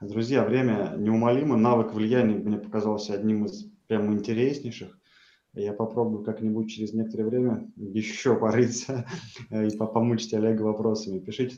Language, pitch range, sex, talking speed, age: Russian, 110-130 Hz, male, 125 wpm, 20-39